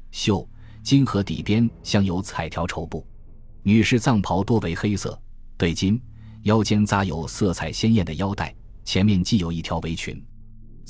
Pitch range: 85-110 Hz